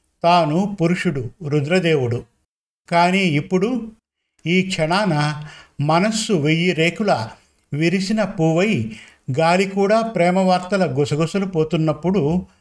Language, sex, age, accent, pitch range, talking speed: Telugu, male, 50-69, native, 150-185 Hz, 80 wpm